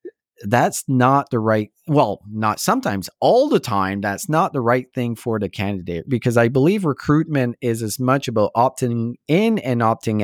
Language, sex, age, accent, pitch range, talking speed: English, male, 30-49, American, 105-145 Hz, 175 wpm